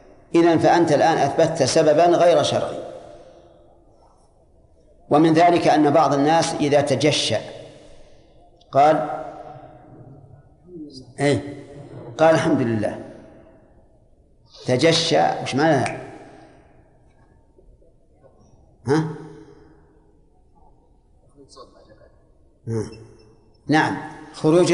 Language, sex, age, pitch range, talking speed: Arabic, male, 50-69, 135-170 Hz, 60 wpm